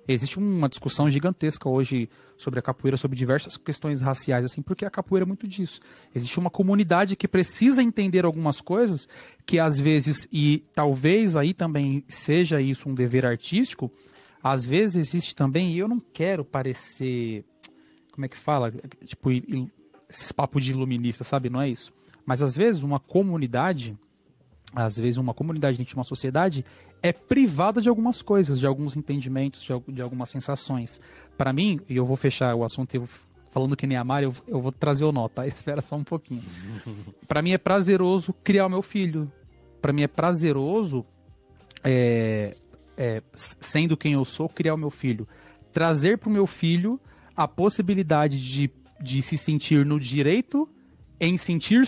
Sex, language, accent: male, Portuguese, Brazilian